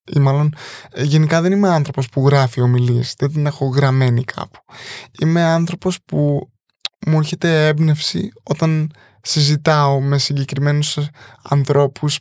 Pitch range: 140-165 Hz